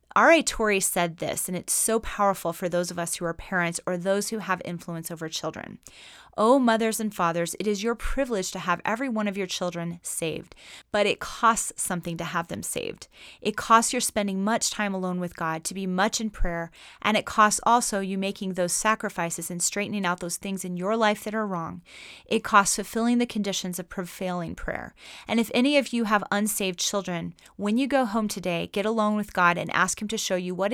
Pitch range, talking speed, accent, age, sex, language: 175-220 Hz, 215 wpm, American, 30-49, female, English